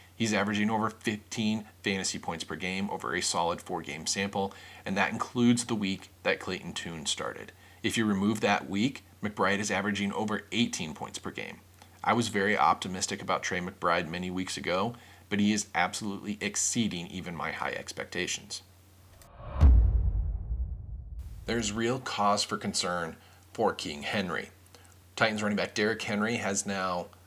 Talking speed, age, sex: 150 wpm, 40-59, male